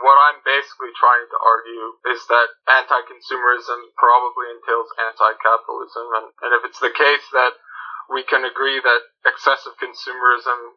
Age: 20-39